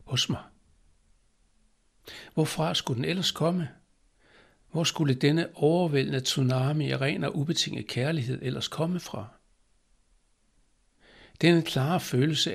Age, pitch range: 60-79, 125-155 Hz